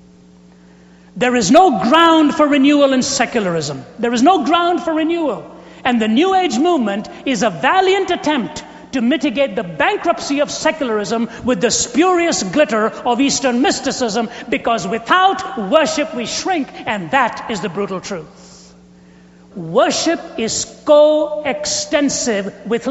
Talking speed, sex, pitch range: 135 wpm, male, 225-315 Hz